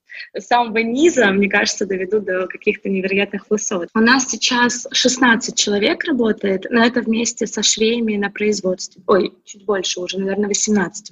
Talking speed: 150 wpm